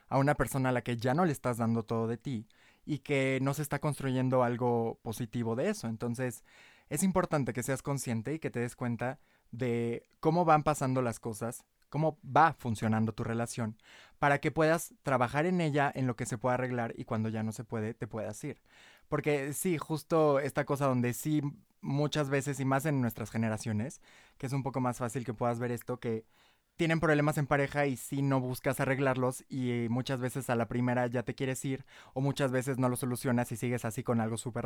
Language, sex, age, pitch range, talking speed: Spanish, male, 20-39, 120-145 Hz, 215 wpm